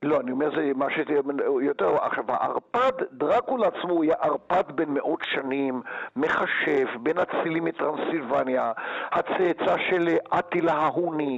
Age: 60-79